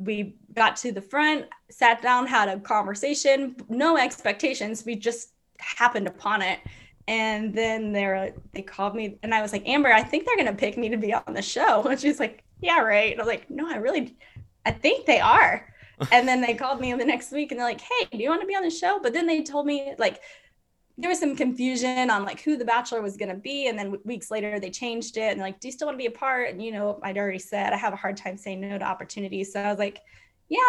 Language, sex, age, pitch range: English, female, 10-29, 205-275 Hz